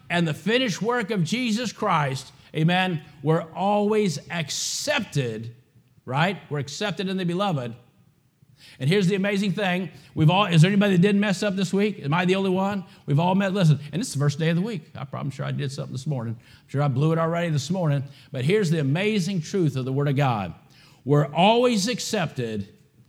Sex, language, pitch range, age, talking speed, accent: male, English, 130-170 Hz, 50-69, 205 wpm, American